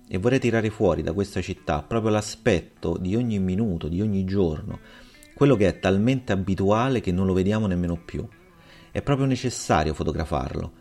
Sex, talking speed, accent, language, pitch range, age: male, 165 wpm, native, Italian, 80-105 Hz, 30-49